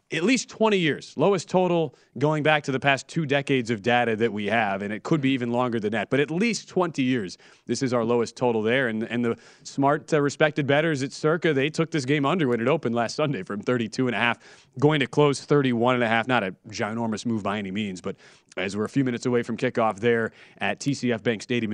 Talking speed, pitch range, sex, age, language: 245 wpm, 125-170 Hz, male, 30-49, English